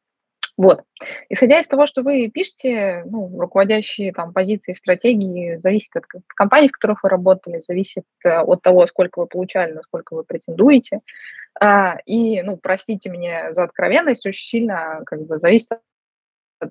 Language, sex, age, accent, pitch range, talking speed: Russian, female, 20-39, native, 185-245 Hz, 145 wpm